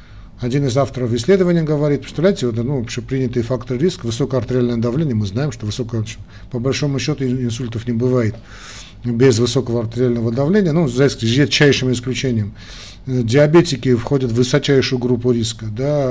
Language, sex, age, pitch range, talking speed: Russian, male, 40-59, 115-140 Hz, 140 wpm